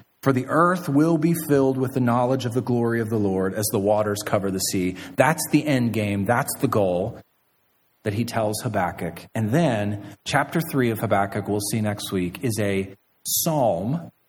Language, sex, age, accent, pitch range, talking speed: English, male, 30-49, American, 105-130 Hz, 190 wpm